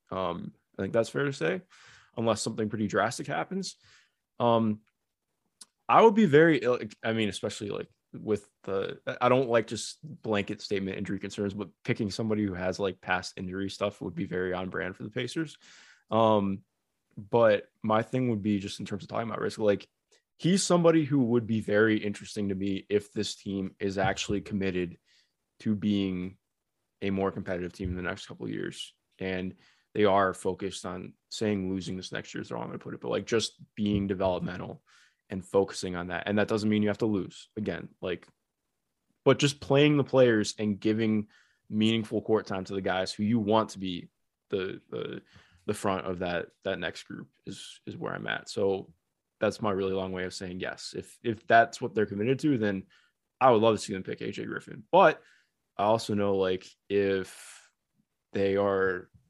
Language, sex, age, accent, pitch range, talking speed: English, male, 20-39, American, 95-110 Hz, 195 wpm